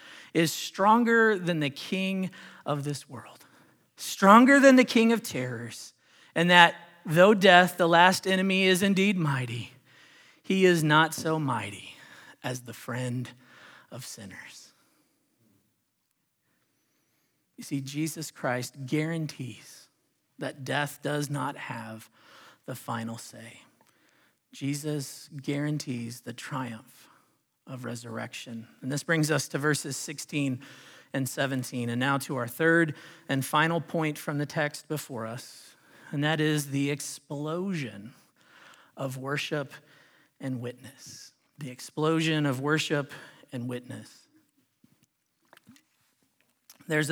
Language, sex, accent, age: English, male, American, 40-59